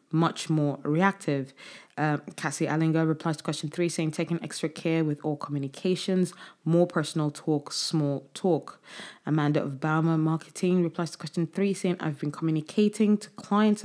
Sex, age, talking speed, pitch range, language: female, 20-39, 155 wpm, 150-180 Hz, English